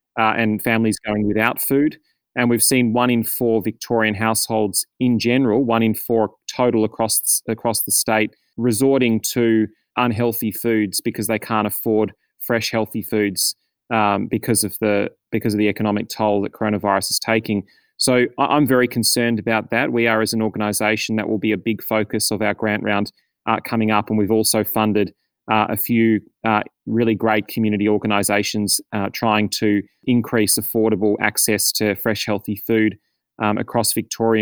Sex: male